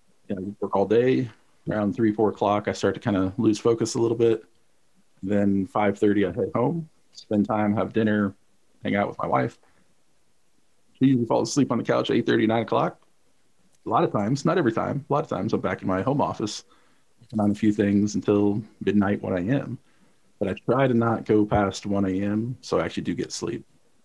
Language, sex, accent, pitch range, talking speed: English, male, American, 100-115 Hz, 215 wpm